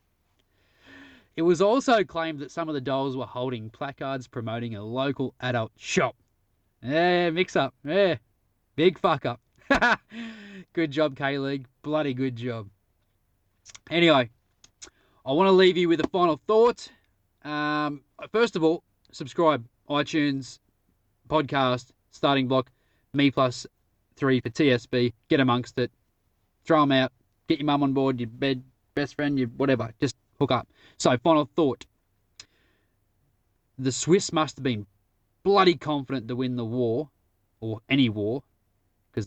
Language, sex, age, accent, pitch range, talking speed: English, male, 20-39, Australian, 100-145 Hz, 140 wpm